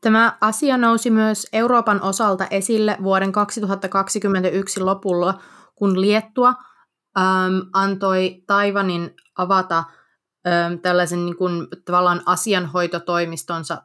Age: 20-39